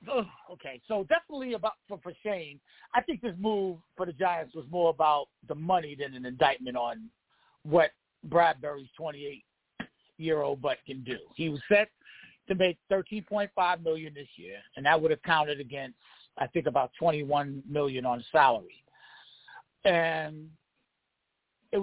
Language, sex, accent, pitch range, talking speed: English, male, American, 160-220 Hz, 160 wpm